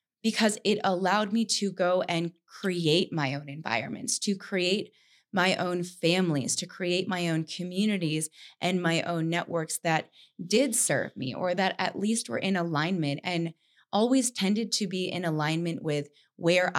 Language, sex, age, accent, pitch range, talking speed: English, female, 20-39, American, 155-185 Hz, 160 wpm